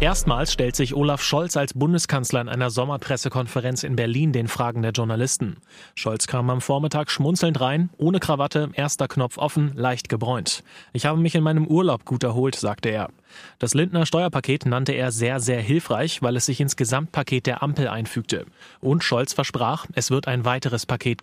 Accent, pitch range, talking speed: German, 125-150 Hz, 180 wpm